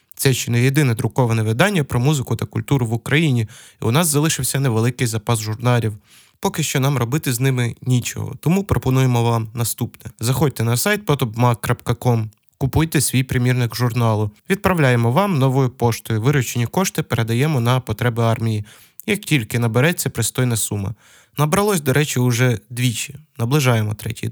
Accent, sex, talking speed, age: native, male, 150 wpm, 20-39